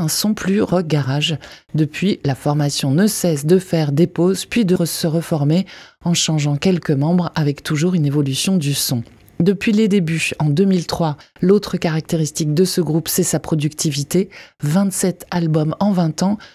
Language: French